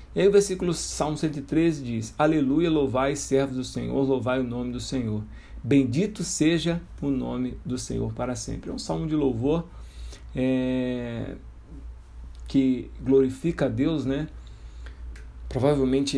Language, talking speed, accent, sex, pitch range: Portuguese, 135 wpm, Brazilian, male, 110-135 Hz